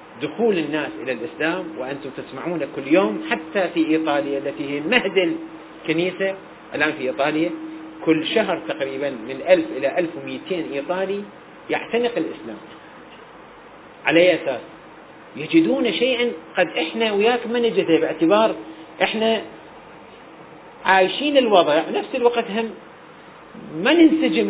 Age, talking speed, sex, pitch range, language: 40-59, 115 wpm, male, 155-205 Hz, Arabic